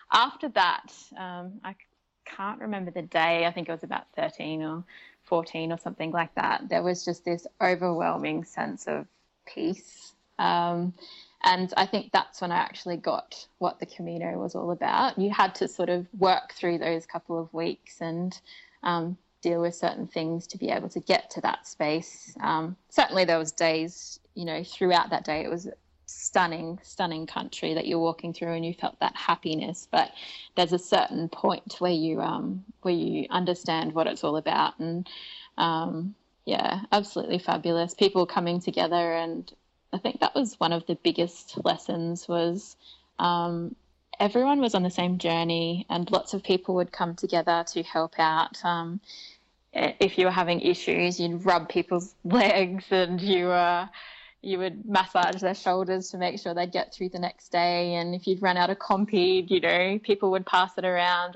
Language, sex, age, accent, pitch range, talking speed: English, female, 20-39, Australian, 170-190 Hz, 180 wpm